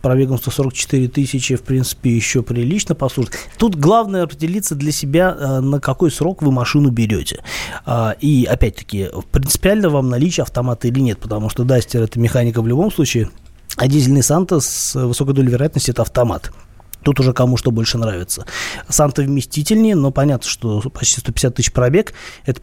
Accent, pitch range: native, 120-145 Hz